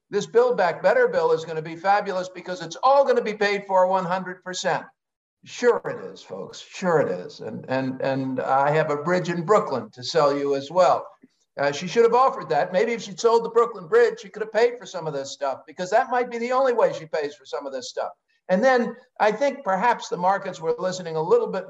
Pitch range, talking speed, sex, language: 155-225 Hz, 235 wpm, male, English